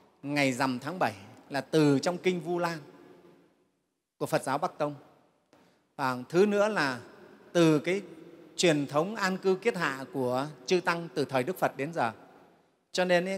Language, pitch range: Vietnamese, 145-185 Hz